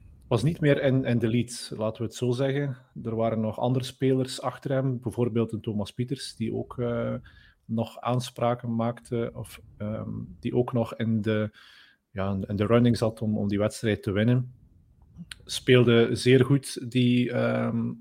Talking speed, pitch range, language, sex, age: 175 wpm, 110-125 Hz, Dutch, male, 40-59